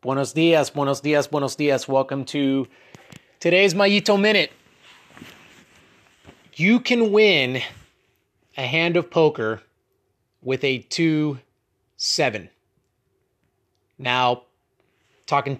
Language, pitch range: English, 130-160 Hz